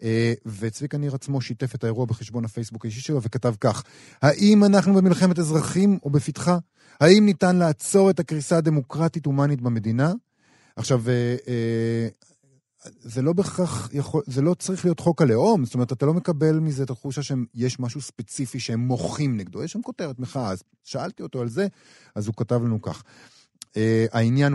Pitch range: 115-145 Hz